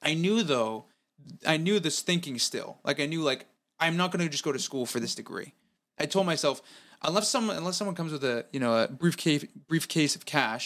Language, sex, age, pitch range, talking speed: English, male, 20-39, 125-165 Hz, 225 wpm